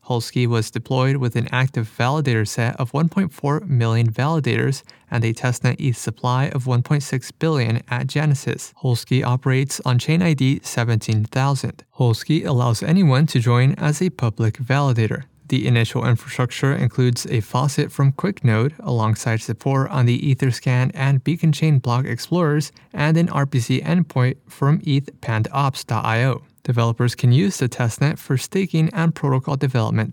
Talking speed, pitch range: 140 wpm, 120-145 Hz